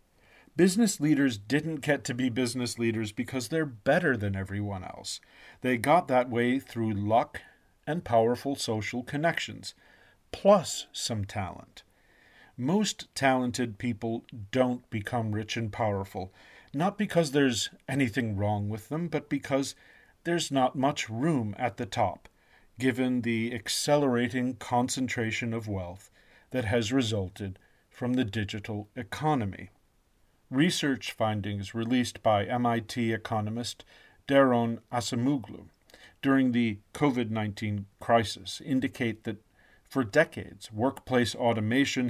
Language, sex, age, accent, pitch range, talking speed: English, male, 40-59, American, 105-130 Hz, 115 wpm